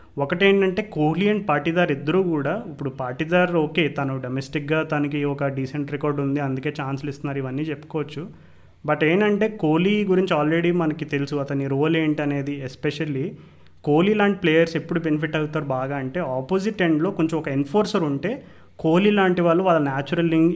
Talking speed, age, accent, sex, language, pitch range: 150 wpm, 30-49, native, male, Telugu, 140-160 Hz